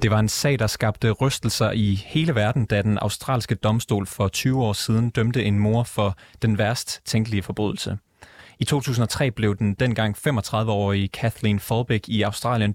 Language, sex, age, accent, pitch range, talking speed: Danish, male, 30-49, native, 100-115 Hz, 170 wpm